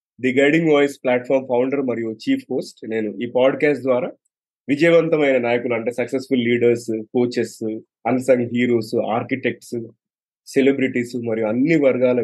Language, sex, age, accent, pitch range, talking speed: Telugu, male, 20-39, native, 115-140 Hz, 125 wpm